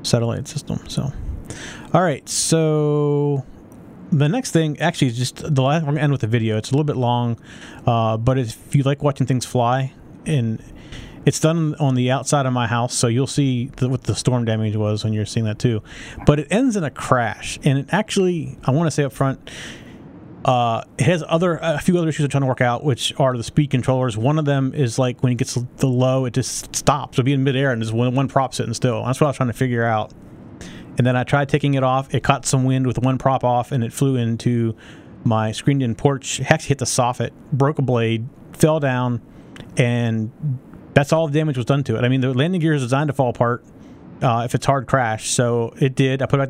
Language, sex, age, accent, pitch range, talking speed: English, male, 30-49, American, 120-150 Hz, 240 wpm